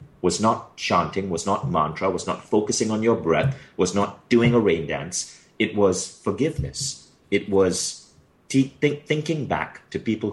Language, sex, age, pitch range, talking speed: English, male, 30-49, 90-125 Hz, 155 wpm